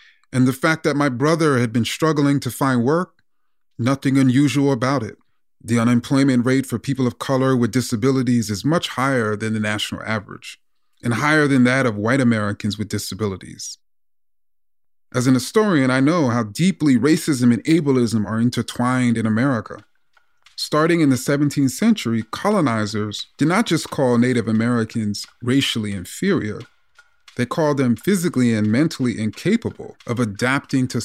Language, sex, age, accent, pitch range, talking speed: English, male, 30-49, American, 115-150 Hz, 155 wpm